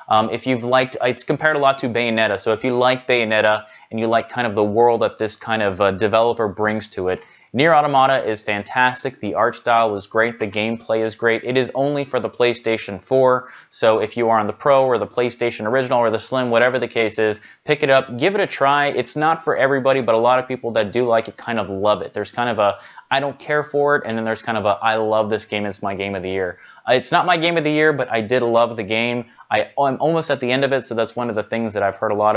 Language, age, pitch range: English, 20-39, 105-130 Hz